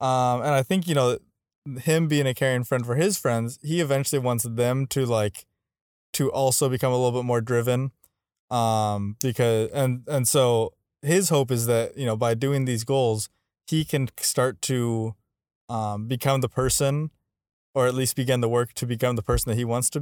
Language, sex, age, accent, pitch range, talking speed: English, male, 20-39, American, 110-130 Hz, 195 wpm